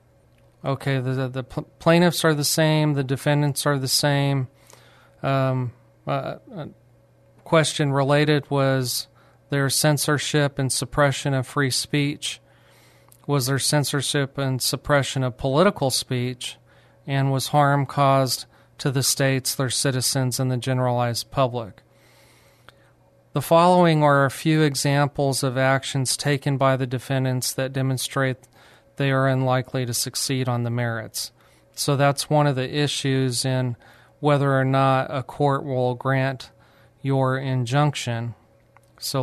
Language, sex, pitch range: English, male, 125-145 Hz